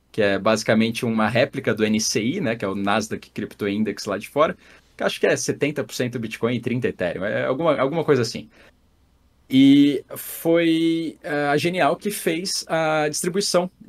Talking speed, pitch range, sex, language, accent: 175 wpm, 110-160 Hz, male, Portuguese, Brazilian